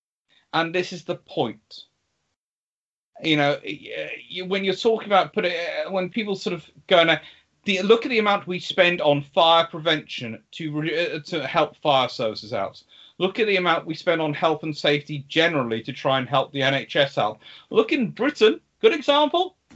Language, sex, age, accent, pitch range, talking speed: English, male, 40-59, British, 150-225 Hz, 175 wpm